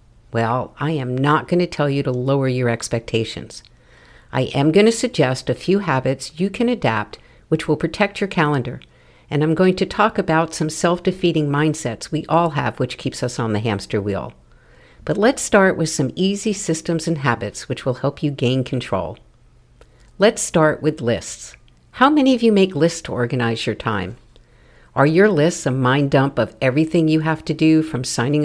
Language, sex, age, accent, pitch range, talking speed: English, female, 50-69, American, 125-170 Hz, 190 wpm